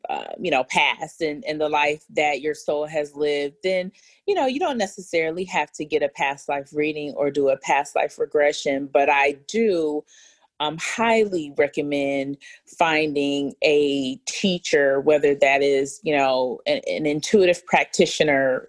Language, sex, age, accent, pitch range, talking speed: English, female, 30-49, American, 145-185 Hz, 165 wpm